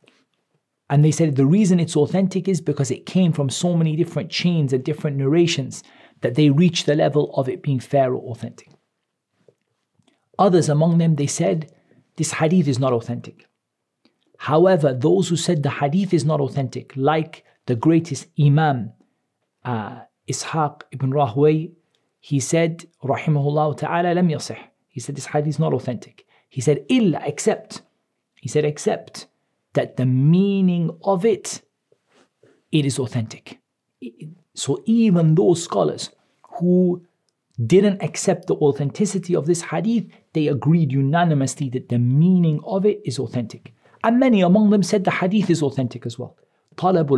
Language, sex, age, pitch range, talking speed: English, male, 40-59, 140-175 Hz, 150 wpm